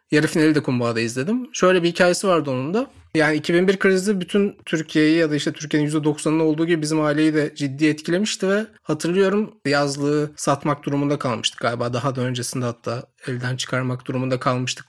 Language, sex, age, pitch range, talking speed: Turkish, male, 30-49, 135-185 Hz, 175 wpm